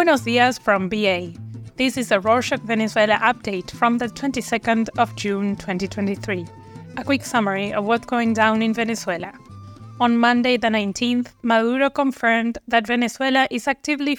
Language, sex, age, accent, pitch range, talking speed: English, female, 20-39, Spanish, 210-245 Hz, 150 wpm